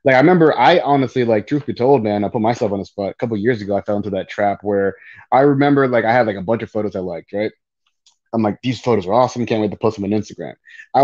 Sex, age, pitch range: male, 20-39, 105-130 Hz